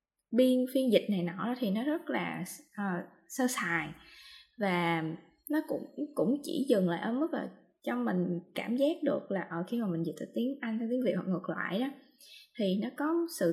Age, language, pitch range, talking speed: 20-39, Vietnamese, 190-275 Hz, 210 wpm